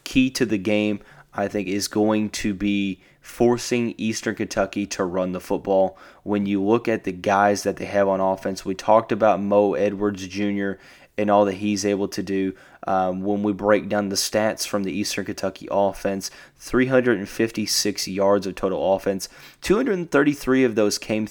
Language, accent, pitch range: English, American, 95-105 Hz